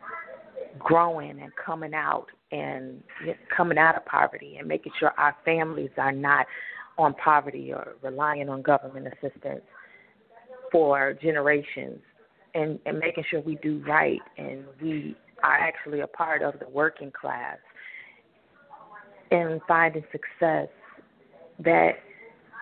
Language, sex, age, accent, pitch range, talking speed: English, female, 30-49, American, 145-180 Hz, 120 wpm